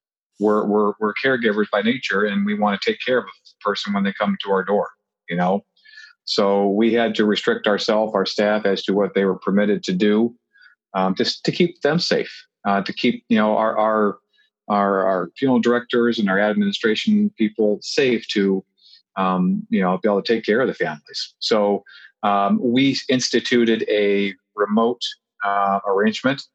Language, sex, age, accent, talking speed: English, male, 40-59, American, 180 wpm